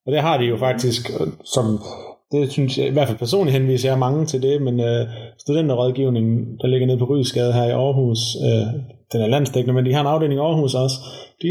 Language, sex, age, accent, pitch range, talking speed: Danish, male, 20-39, native, 115-130 Hz, 220 wpm